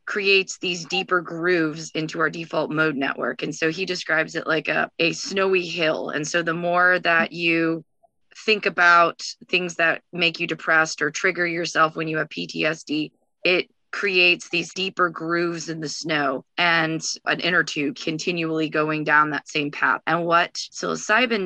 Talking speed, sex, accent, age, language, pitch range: 170 wpm, female, American, 20-39, English, 160-180 Hz